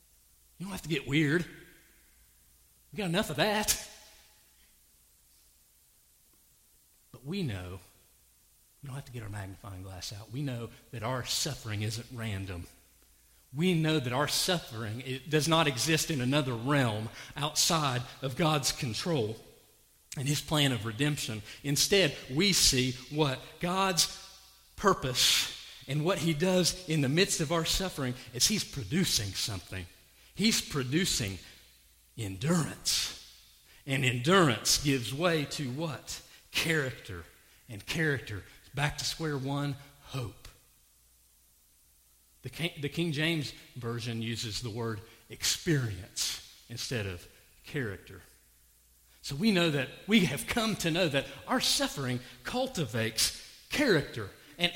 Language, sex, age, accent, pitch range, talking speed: English, male, 40-59, American, 105-165 Hz, 125 wpm